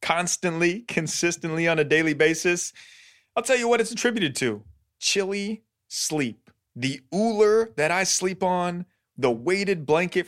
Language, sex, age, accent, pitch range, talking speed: English, male, 30-49, American, 120-170 Hz, 140 wpm